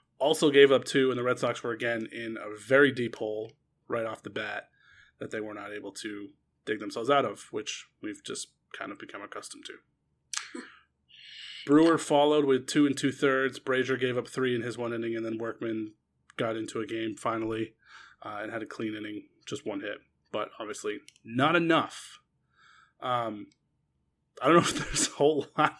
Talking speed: 190 wpm